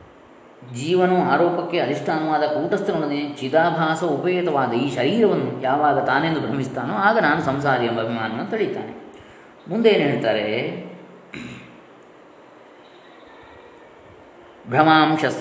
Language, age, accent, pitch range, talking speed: Kannada, 20-39, native, 115-155 Hz, 80 wpm